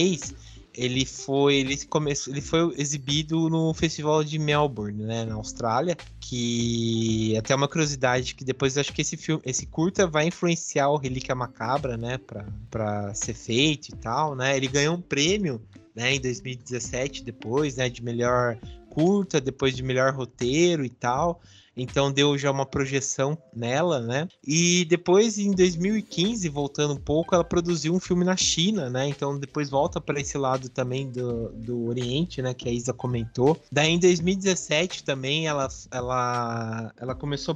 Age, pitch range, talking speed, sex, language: 20-39, 125-150 Hz, 160 wpm, male, Portuguese